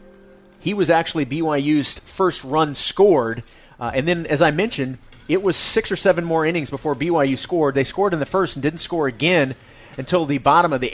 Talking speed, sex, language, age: 205 wpm, male, English, 30-49